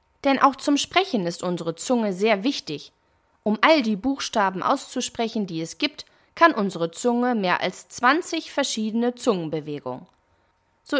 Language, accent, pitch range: German, German, 185-260 Hz